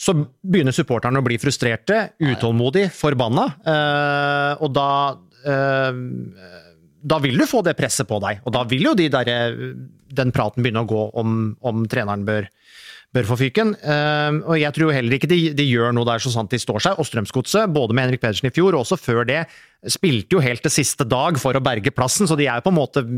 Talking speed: 190 wpm